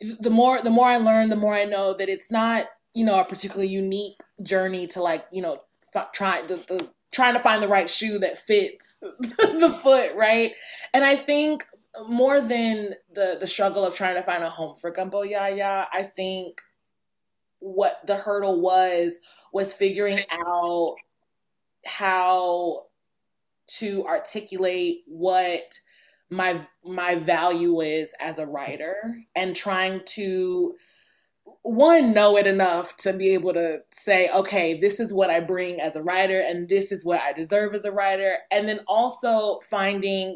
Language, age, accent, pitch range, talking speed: English, 20-39, American, 180-215 Hz, 160 wpm